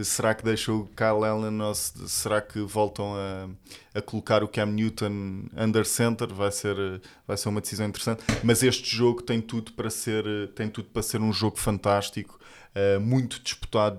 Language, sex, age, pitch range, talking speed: Portuguese, male, 20-39, 105-120 Hz, 175 wpm